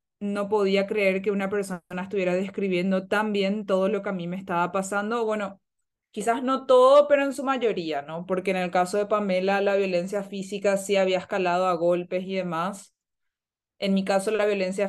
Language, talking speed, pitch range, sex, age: Portuguese, 195 wpm, 190-215 Hz, female, 20-39